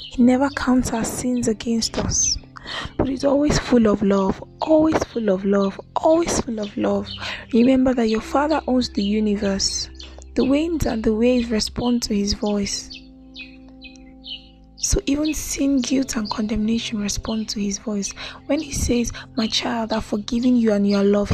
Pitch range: 220-265 Hz